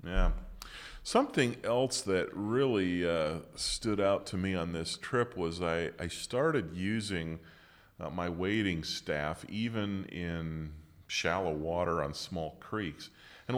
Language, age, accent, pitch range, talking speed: English, 40-59, American, 80-95 Hz, 135 wpm